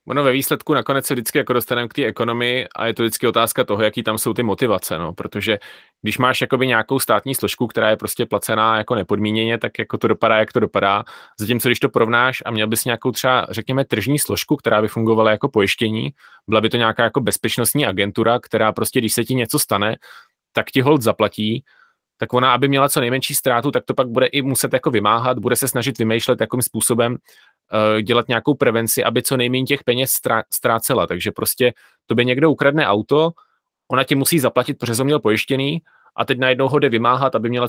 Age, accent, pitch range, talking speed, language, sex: 30-49, native, 115-135 Hz, 205 wpm, Czech, male